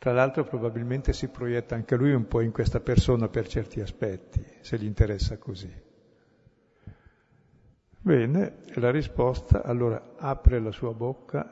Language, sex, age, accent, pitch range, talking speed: Italian, male, 60-79, native, 110-130 Hz, 140 wpm